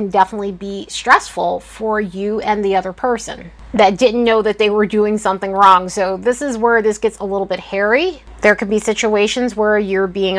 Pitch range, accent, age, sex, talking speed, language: 210-275 Hz, American, 30-49, female, 200 wpm, English